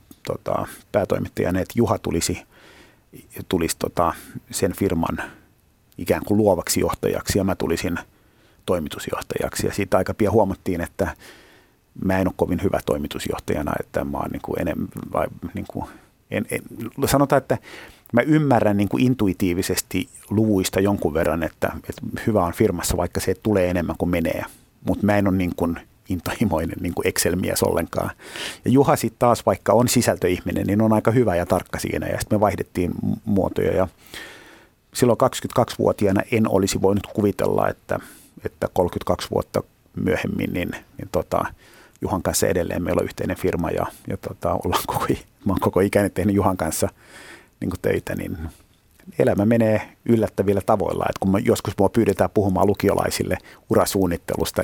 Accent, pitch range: native, 90-110 Hz